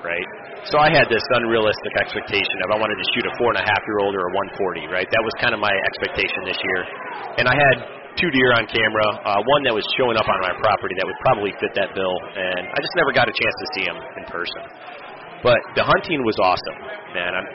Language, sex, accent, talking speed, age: English, male, American, 225 wpm, 30-49